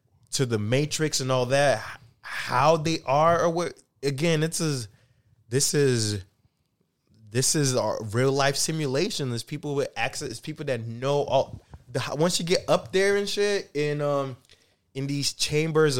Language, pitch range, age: English, 115-140 Hz, 20-39